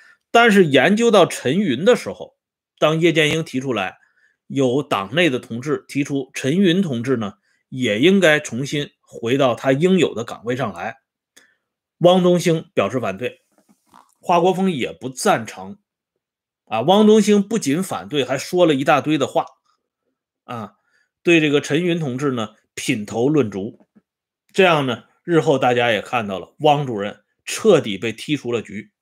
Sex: male